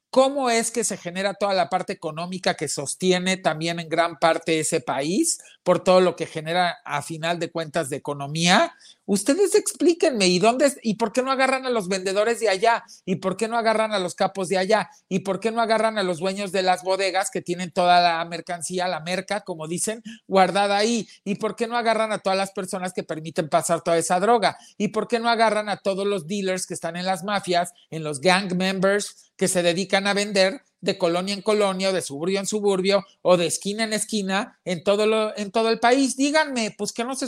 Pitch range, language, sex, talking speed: 175-225 Hz, Spanish, male, 220 wpm